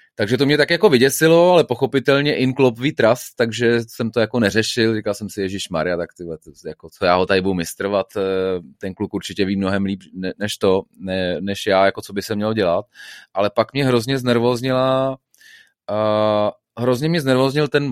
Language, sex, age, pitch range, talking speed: Slovak, male, 30-49, 100-120 Hz, 175 wpm